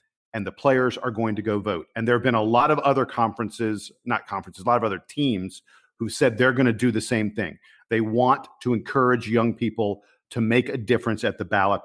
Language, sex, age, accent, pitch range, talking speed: English, male, 50-69, American, 110-135 Hz, 235 wpm